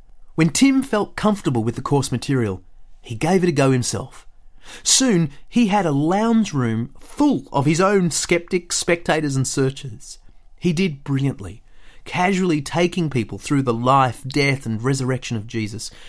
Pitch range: 115-180 Hz